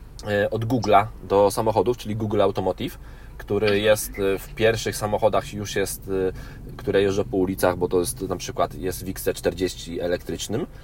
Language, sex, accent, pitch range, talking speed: Polish, male, native, 95-120 Hz, 150 wpm